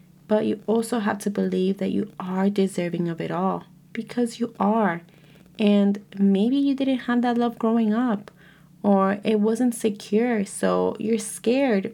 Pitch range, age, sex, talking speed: 185-220 Hz, 20-39, female, 160 wpm